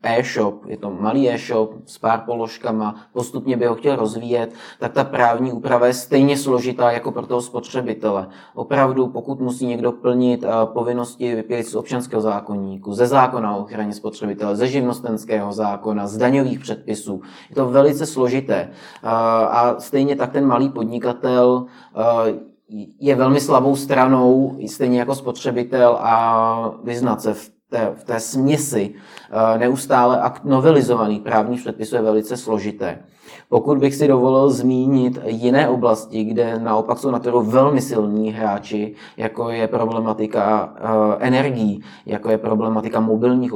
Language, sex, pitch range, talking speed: Czech, male, 110-125 Hz, 140 wpm